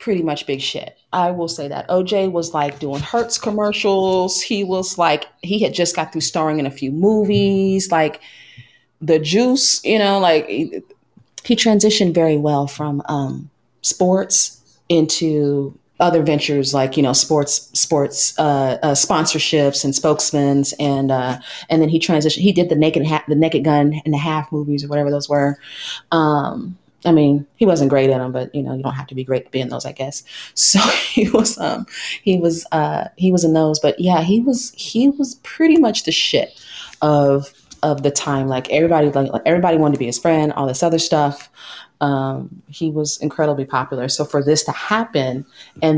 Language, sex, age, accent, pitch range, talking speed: English, female, 30-49, American, 140-175 Hz, 195 wpm